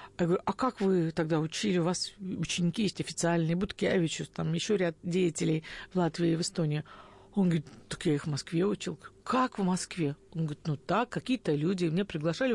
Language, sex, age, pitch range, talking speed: Russian, female, 50-69, 180-230 Hz, 195 wpm